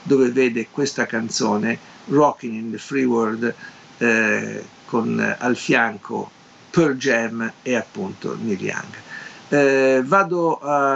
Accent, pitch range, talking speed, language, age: native, 110-135 Hz, 120 wpm, Italian, 50-69